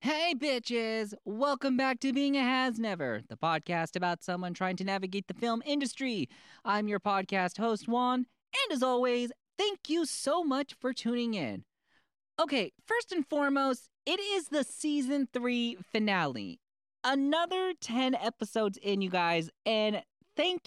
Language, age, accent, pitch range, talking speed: English, 30-49, American, 195-265 Hz, 150 wpm